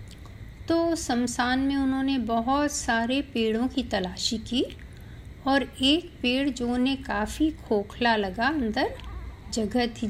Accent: native